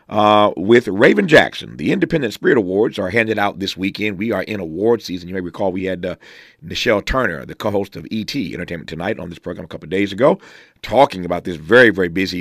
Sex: male